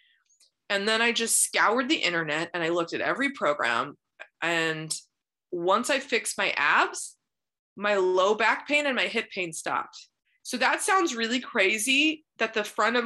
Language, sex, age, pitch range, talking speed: English, female, 20-39, 180-270 Hz, 170 wpm